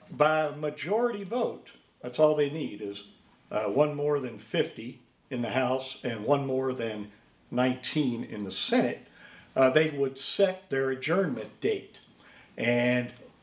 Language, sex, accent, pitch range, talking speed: English, male, American, 125-160 Hz, 150 wpm